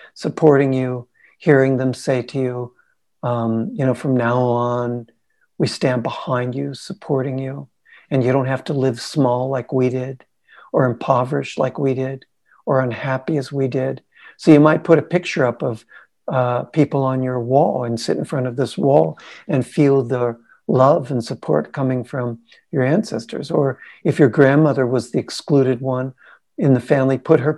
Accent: American